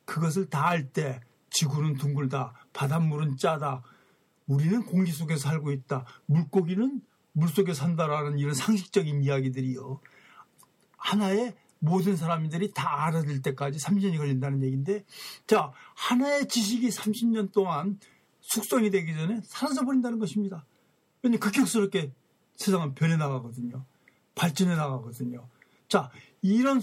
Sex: male